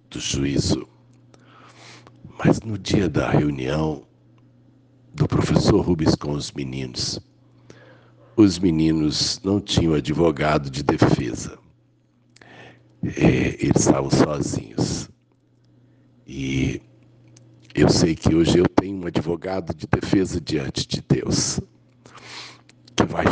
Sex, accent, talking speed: male, Brazilian, 100 wpm